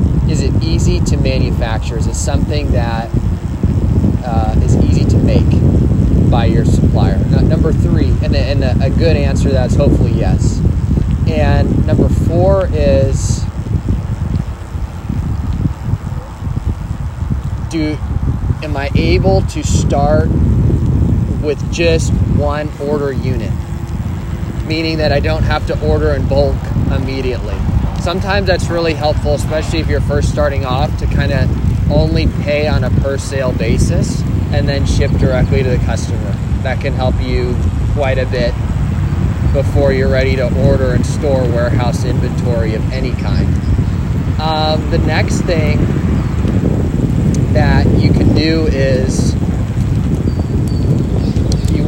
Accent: American